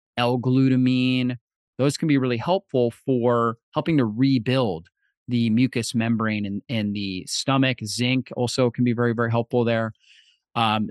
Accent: American